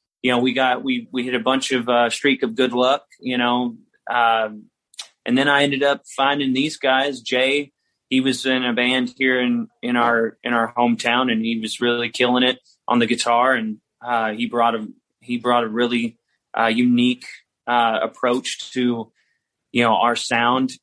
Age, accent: 20-39, American